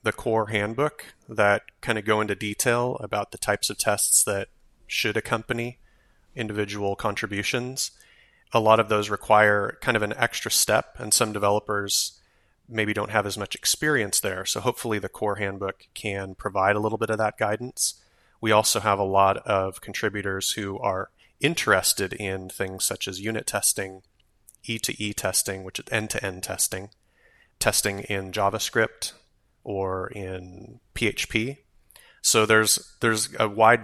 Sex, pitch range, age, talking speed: male, 100-110 Hz, 30-49, 160 wpm